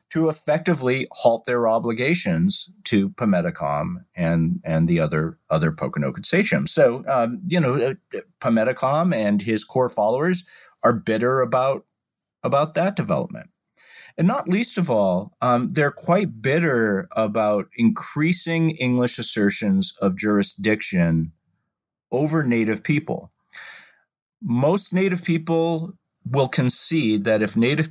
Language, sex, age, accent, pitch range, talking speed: English, male, 40-59, American, 110-170 Hz, 120 wpm